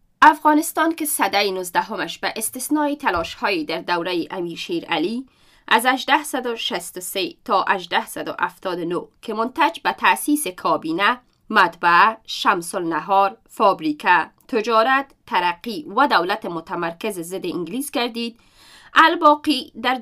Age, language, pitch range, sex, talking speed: 30-49, Persian, 190-265 Hz, female, 100 wpm